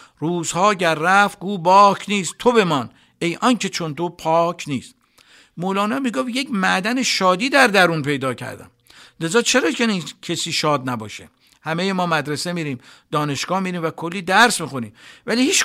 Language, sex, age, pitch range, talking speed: Persian, male, 60-79, 150-200 Hz, 155 wpm